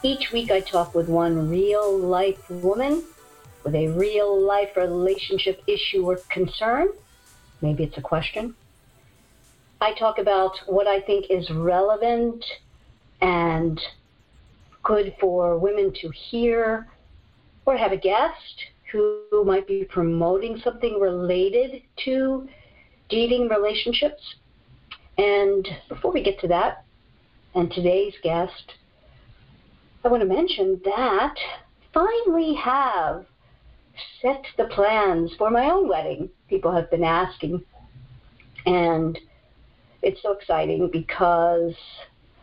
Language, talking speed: English, 110 wpm